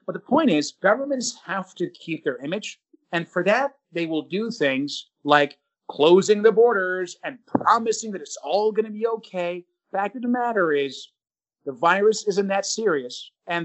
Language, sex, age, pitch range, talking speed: English, male, 30-49, 165-235 Hz, 180 wpm